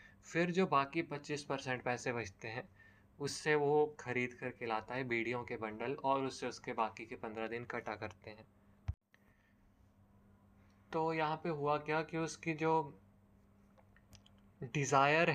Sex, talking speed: male, 140 wpm